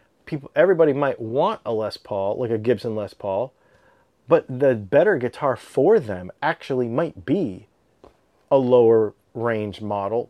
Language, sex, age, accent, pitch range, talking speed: English, male, 30-49, American, 105-130 Hz, 145 wpm